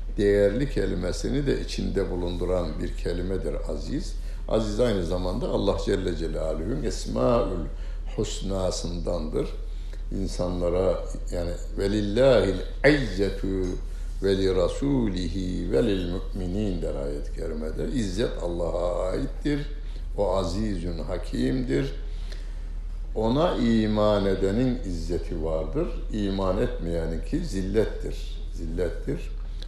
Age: 60-79